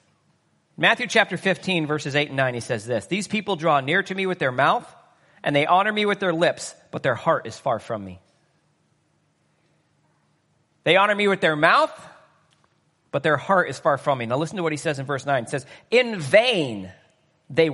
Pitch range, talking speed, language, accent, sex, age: 145-200 Hz, 205 wpm, English, American, male, 40-59